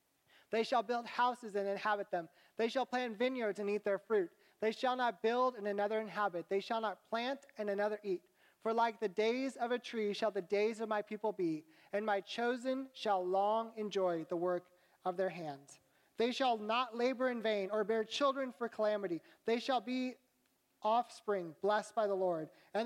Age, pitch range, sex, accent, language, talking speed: 30-49, 185-230 Hz, male, American, English, 195 wpm